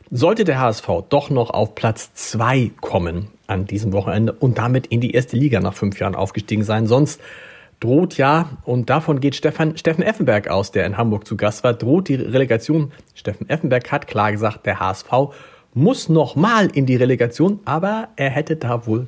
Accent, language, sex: German, German, male